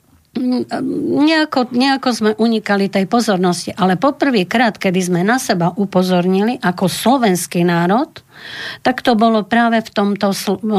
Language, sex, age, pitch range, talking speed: Slovak, female, 50-69, 175-205 Hz, 115 wpm